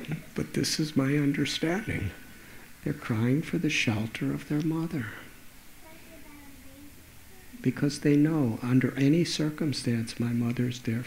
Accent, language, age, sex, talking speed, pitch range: American, English, 50-69, male, 125 wpm, 105-130 Hz